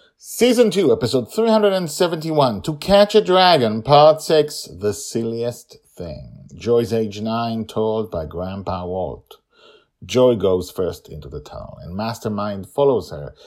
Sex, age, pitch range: male, 50-69, 105-150 Hz